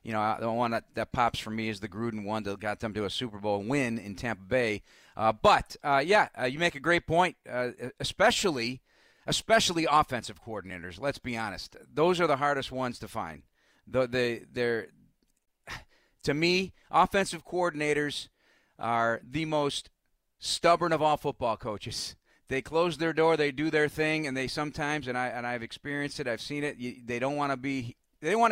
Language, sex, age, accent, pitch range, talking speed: English, male, 40-59, American, 110-140 Hz, 200 wpm